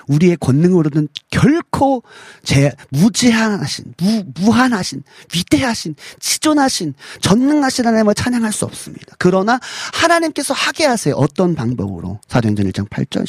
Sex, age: male, 40-59